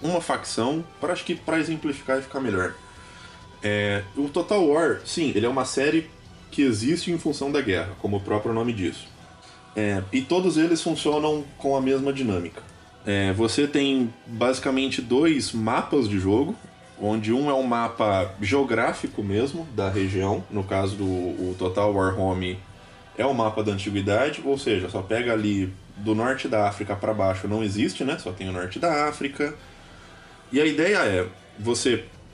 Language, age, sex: Portuguese, 20-39, male